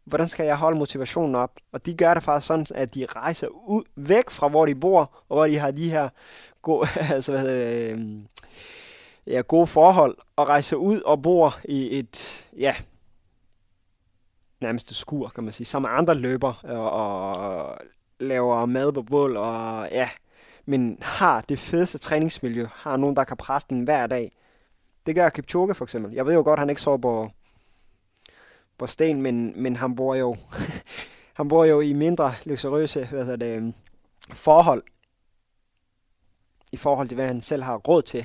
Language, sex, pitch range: Danish, male, 120-150 Hz